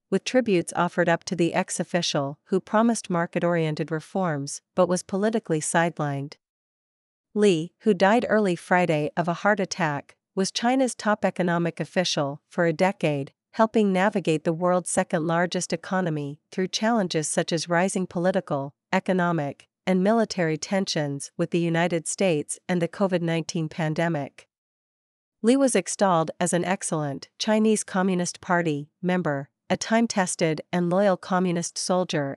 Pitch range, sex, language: 165-195 Hz, female, Vietnamese